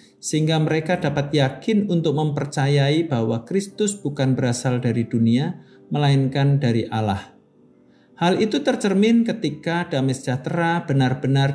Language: Indonesian